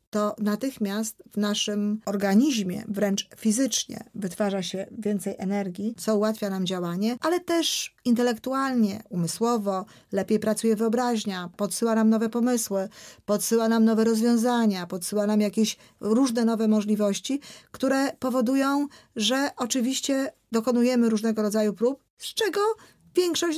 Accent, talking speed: native, 120 wpm